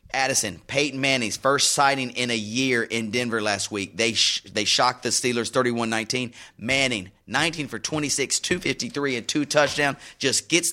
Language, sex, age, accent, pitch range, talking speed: English, male, 30-49, American, 110-135 Hz, 160 wpm